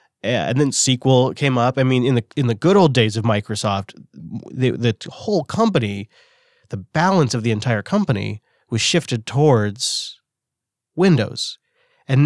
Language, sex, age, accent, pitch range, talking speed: English, male, 30-49, American, 115-150 Hz, 150 wpm